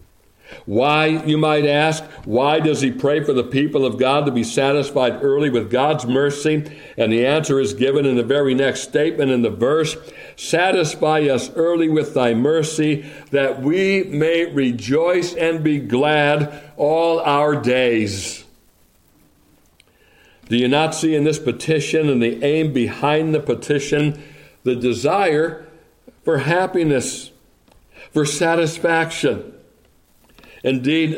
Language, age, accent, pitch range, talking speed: English, 60-79, American, 125-155 Hz, 135 wpm